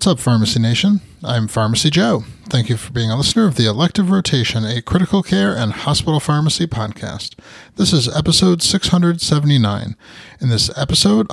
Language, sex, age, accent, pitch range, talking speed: English, male, 30-49, American, 120-170 Hz, 165 wpm